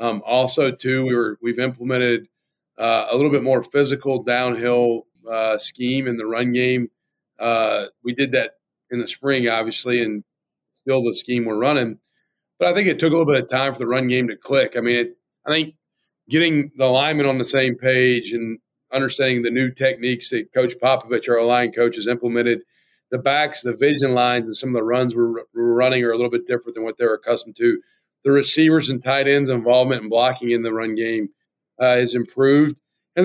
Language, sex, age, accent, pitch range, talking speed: English, male, 40-59, American, 120-140 Hz, 210 wpm